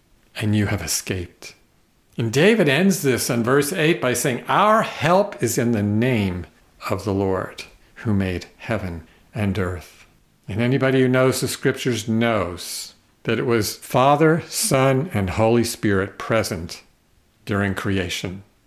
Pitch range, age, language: 100-130 Hz, 50-69, English